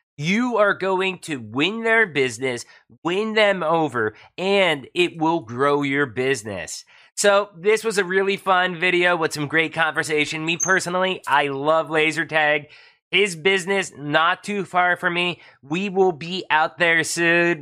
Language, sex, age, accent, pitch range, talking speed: English, male, 30-49, American, 145-185 Hz, 155 wpm